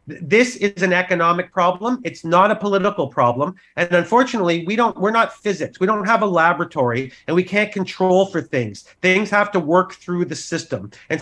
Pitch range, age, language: 160-200 Hz, 40-59, English